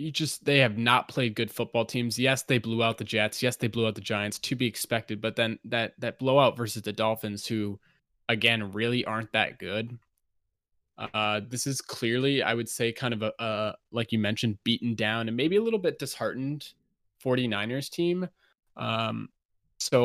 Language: English